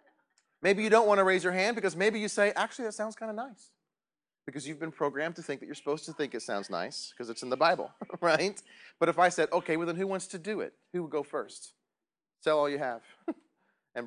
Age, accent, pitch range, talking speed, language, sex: 30-49, American, 135-190 Hz, 250 wpm, English, male